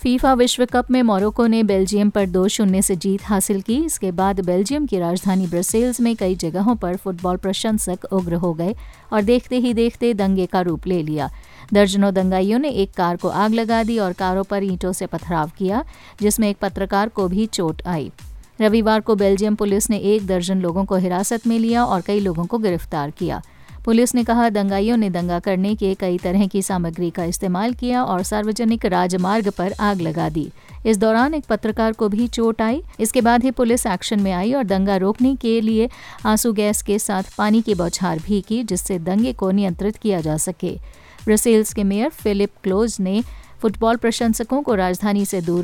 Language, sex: Hindi, female